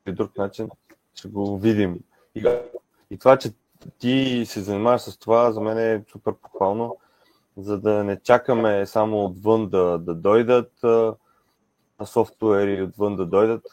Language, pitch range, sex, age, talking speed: Bulgarian, 105-125 Hz, male, 20-39, 150 wpm